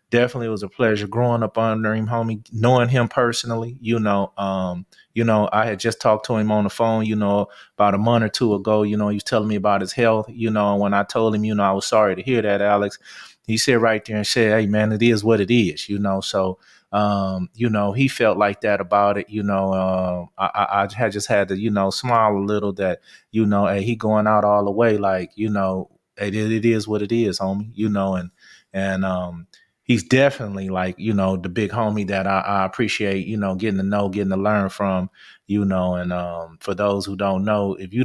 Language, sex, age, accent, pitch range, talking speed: English, male, 30-49, American, 95-110 Hz, 245 wpm